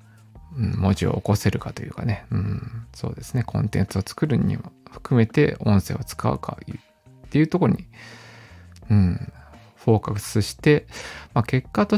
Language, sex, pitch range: Japanese, male, 100-145 Hz